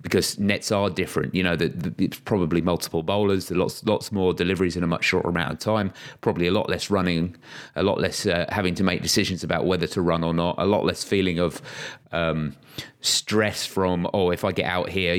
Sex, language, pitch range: male, English, 90-105 Hz